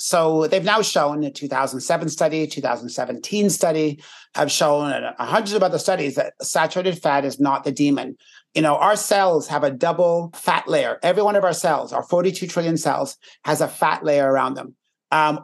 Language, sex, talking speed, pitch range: English, male, 190 wpm, 150-185 Hz